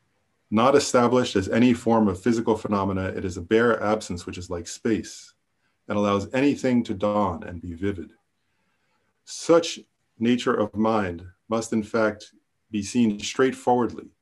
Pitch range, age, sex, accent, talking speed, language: 100-120 Hz, 40-59, male, American, 150 wpm, English